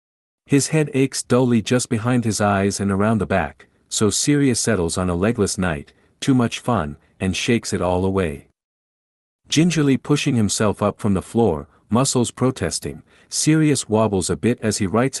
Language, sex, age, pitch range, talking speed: English, male, 50-69, 90-125 Hz, 170 wpm